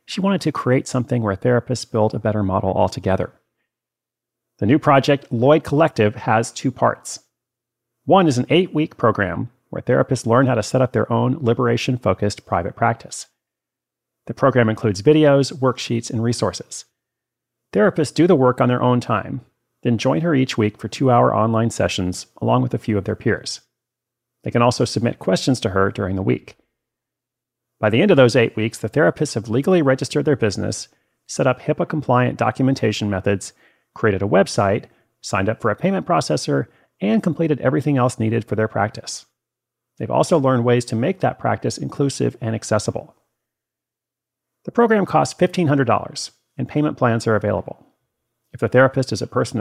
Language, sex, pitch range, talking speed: English, male, 110-135 Hz, 175 wpm